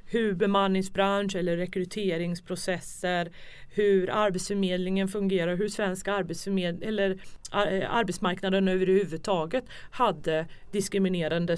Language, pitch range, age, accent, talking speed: English, 180-205 Hz, 30-49, Swedish, 85 wpm